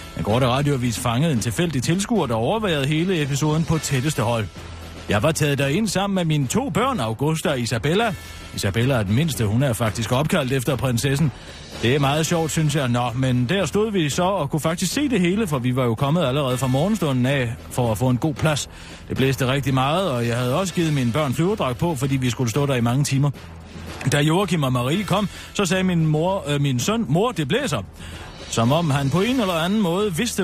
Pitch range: 120-165 Hz